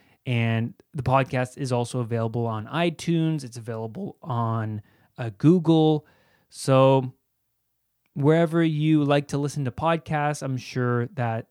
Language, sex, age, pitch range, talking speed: English, male, 20-39, 115-160 Hz, 125 wpm